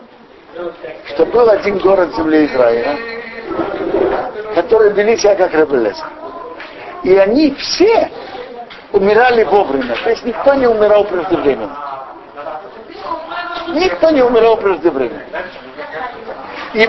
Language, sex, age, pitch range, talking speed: Russian, male, 60-79, 180-280 Hz, 95 wpm